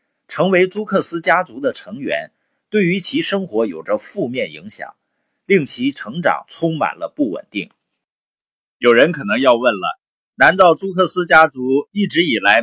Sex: male